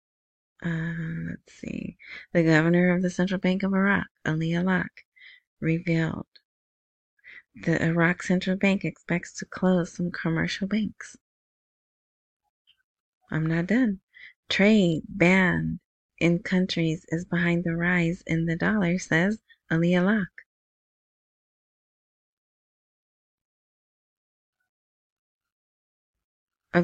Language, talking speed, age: English, 95 wpm, 30-49